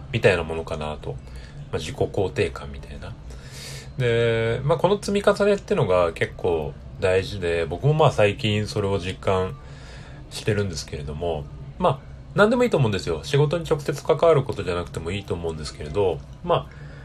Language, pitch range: Japanese, 85-145 Hz